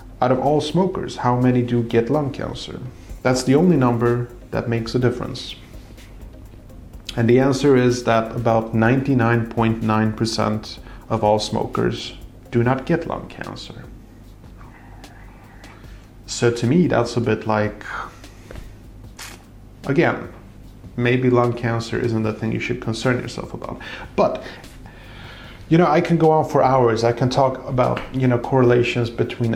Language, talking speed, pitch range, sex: English, 140 wpm, 110-125 Hz, male